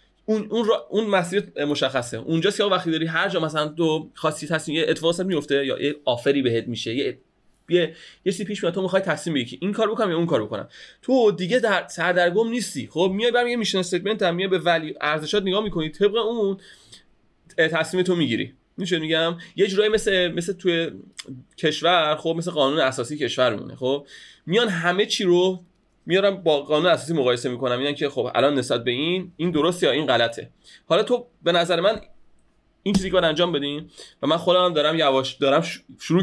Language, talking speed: Persian, 190 wpm